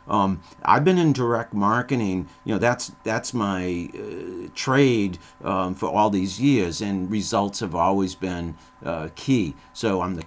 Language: English